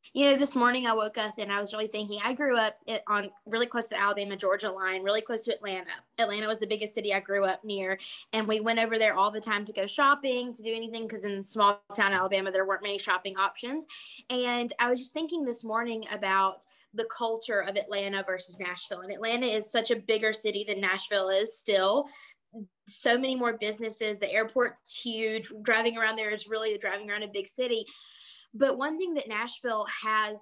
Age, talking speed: 20-39, 215 wpm